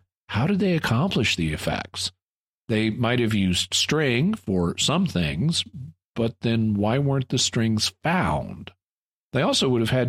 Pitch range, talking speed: 95-130 Hz, 155 wpm